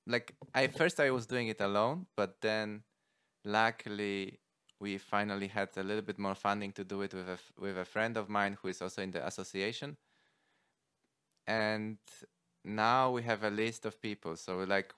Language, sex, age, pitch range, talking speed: English, male, 20-39, 105-130 Hz, 180 wpm